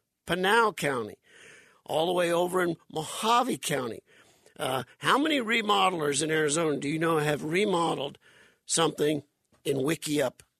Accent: American